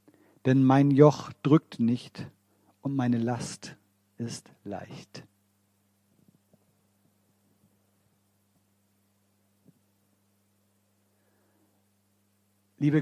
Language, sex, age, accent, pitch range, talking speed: German, male, 50-69, German, 100-155 Hz, 50 wpm